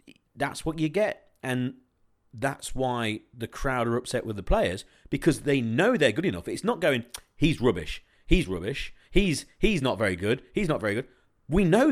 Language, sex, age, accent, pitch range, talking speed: English, male, 40-59, British, 95-145 Hz, 190 wpm